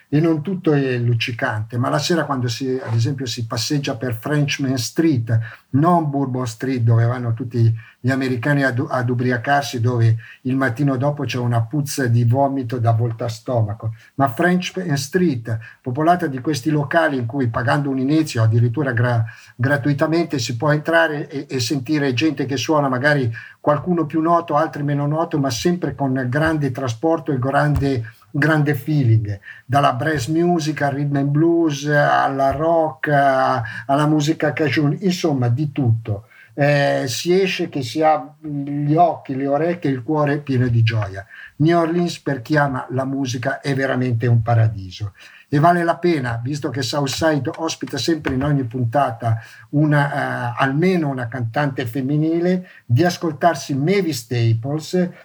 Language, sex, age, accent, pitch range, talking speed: Italian, male, 50-69, native, 125-155 Hz, 155 wpm